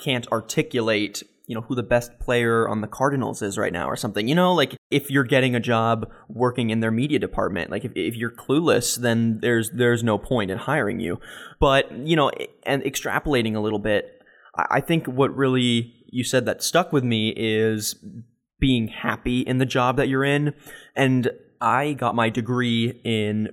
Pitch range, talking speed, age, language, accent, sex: 115-130 Hz, 190 wpm, 20-39, English, American, male